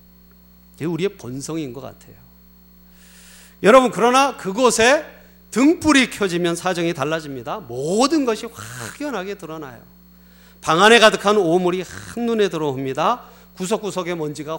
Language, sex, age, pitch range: Korean, male, 40-59, 120-195 Hz